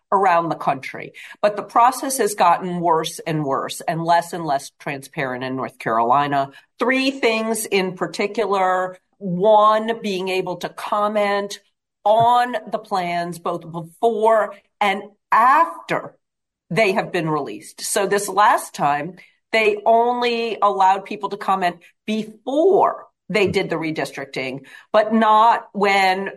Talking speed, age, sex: 130 wpm, 40-59, female